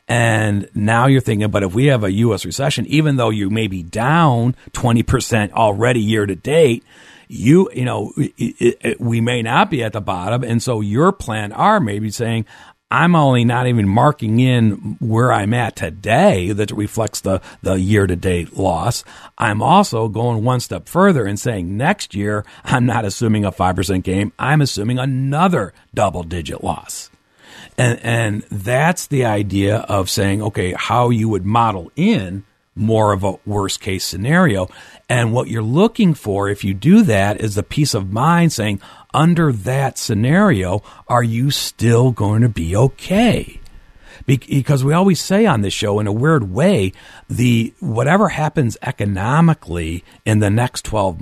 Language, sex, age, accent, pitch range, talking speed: English, male, 50-69, American, 100-130 Hz, 170 wpm